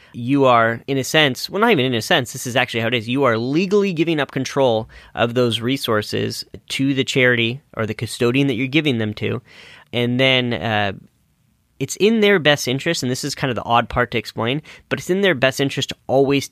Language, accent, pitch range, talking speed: English, American, 110-140 Hz, 230 wpm